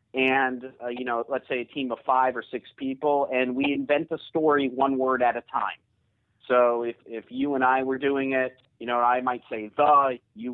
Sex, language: male, English